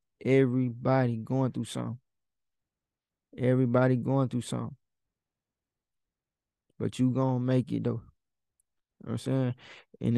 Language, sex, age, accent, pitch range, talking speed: English, male, 20-39, American, 120-135 Hz, 120 wpm